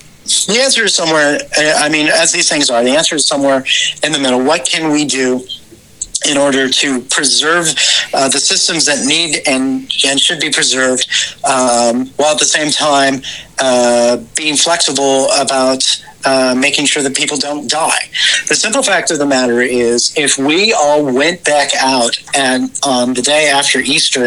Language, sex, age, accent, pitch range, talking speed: English, male, 40-59, American, 125-150 Hz, 180 wpm